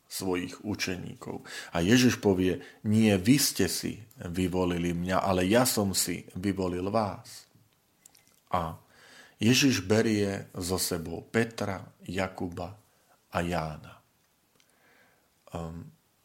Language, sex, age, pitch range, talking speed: Slovak, male, 40-59, 90-125 Hz, 100 wpm